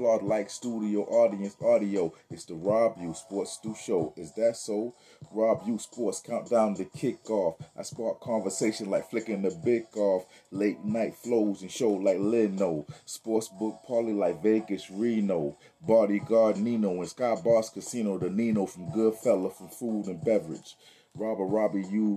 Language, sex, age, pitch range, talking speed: English, male, 30-49, 100-115 Hz, 160 wpm